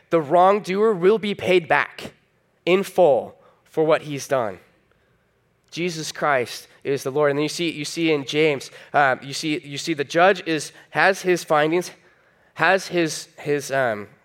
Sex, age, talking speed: male, 10-29, 160 wpm